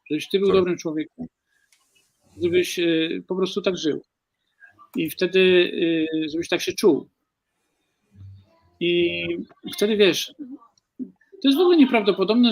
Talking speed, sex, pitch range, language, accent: 115 wpm, male, 150-220 Hz, Polish, native